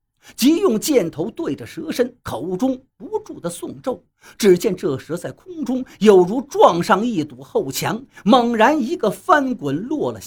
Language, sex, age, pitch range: Chinese, male, 50-69, 180-290 Hz